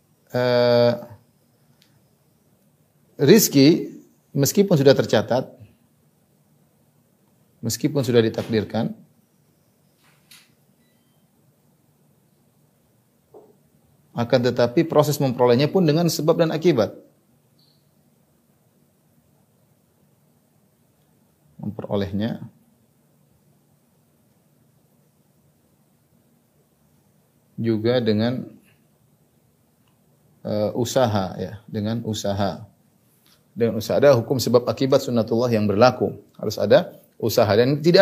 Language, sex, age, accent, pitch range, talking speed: Indonesian, male, 40-59, native, 110-145 Hz, 60 wpm